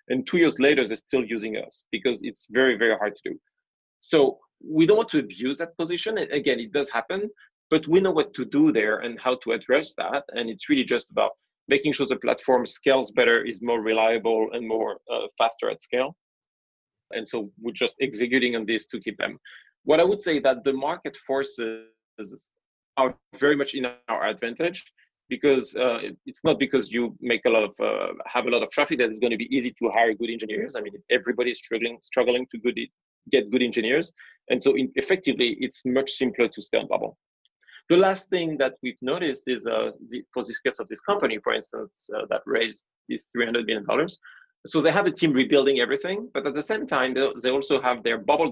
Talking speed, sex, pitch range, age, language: 210 wpm, male, 115-150 Hz, 30-49, English